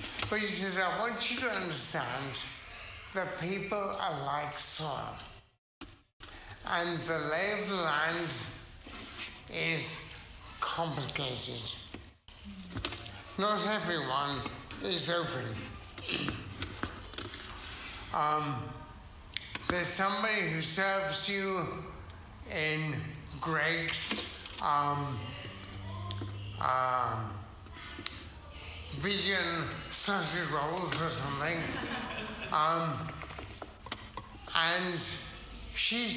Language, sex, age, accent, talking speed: English, male, 60-79, American, 70 wpm